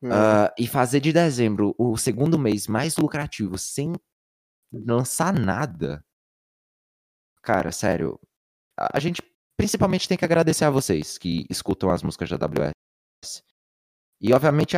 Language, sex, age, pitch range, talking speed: Portuguese, male, 20-39, 105-160 Hz, 125 wpm